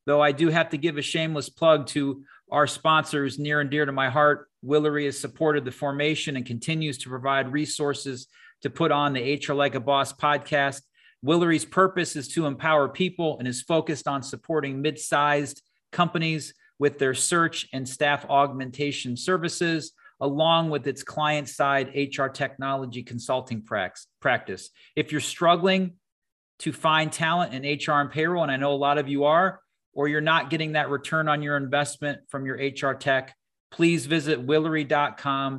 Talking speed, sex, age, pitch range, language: 165 wpm, male, 40-59, 135-155 Hz, English